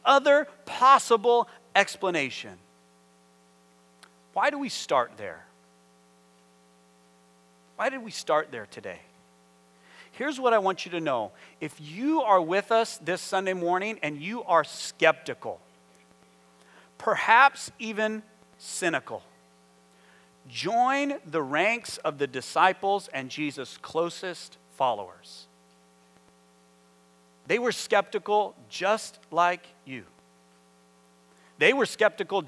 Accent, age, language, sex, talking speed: American, 40-59, English, male, 100 wpm